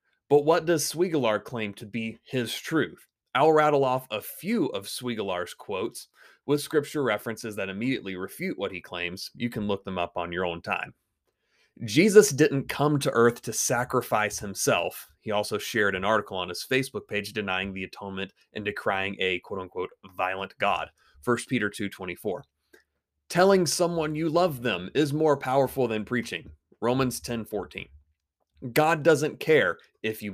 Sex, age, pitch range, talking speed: male, 30-49, 100-145 Hz, 160 wpm